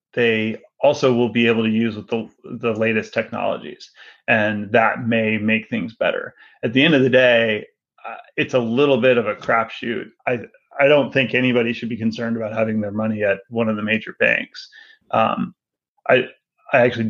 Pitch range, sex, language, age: 110-135 Hz, male, English, 30-49